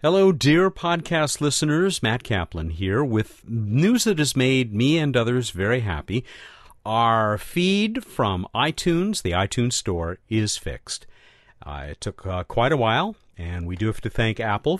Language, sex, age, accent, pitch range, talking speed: English, male, 50-69, American, 95-145 Hz, 160 wpm